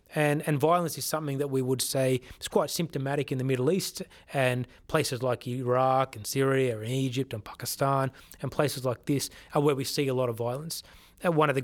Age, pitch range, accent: 30-49, 130-150 Hz, Australian